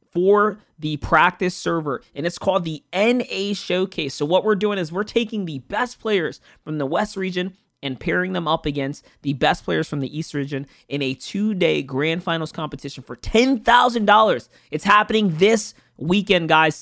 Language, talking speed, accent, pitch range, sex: English, 175 wpm, American, 145-205 Hz, male